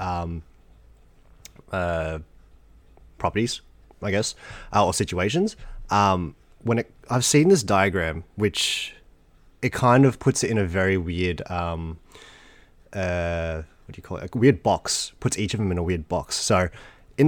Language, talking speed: English, 155 wpm